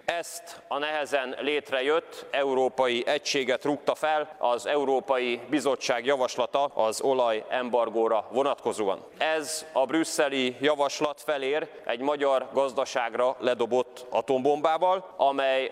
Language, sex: Hungarian, male